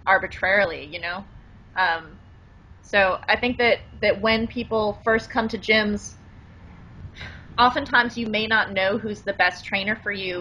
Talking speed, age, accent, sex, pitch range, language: 150 wpm, 20-39, American, female, 145-215 Hz, English